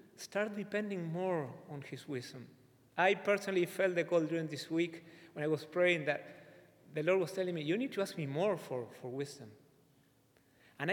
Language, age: English, 40-59